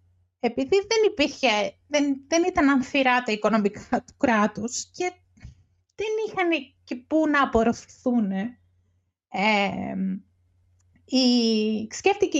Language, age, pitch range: Greek, 30-49, 210-290 Hz